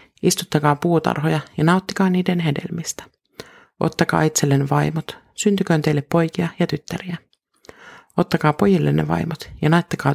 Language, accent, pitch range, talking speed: Finnish, native, 145-180 Hz, 110 wpm